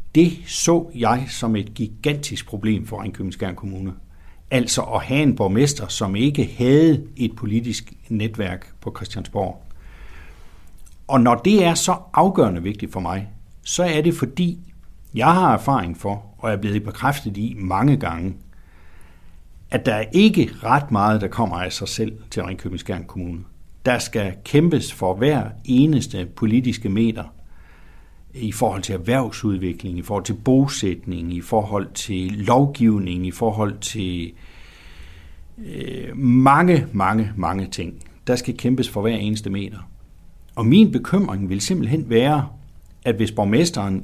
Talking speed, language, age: 145 wpm, Danish, 60-79